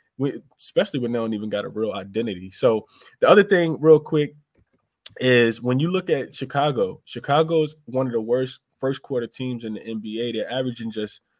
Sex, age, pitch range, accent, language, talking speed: male, 20-39, 110-135 Hz, American, English, 185 wpm